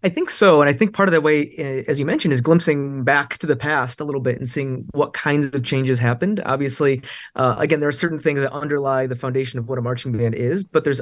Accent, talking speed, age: American, 260 wpm, 20-39